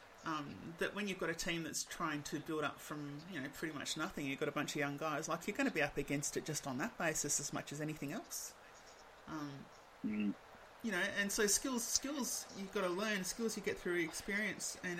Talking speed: 235 wpm